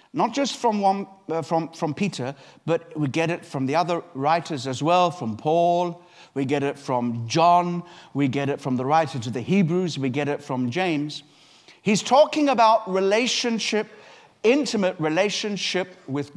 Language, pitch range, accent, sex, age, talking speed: English, 145-200 Hz, British, male, 60-79, 170 wpm